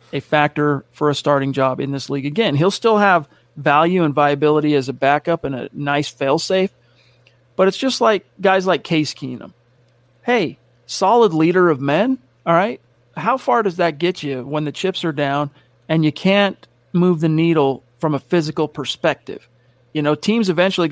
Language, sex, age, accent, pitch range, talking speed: English, male, 40-59, American, 145-180 Hz, 180 wpm